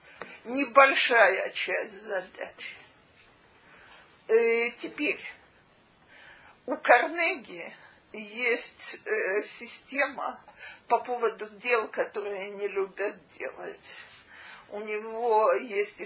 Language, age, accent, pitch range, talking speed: Russian, 40-59, native, 220-340 Hz, 65 wpm